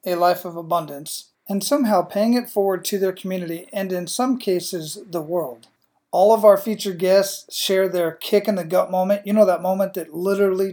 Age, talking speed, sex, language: 40-59, 200 wpm, male, English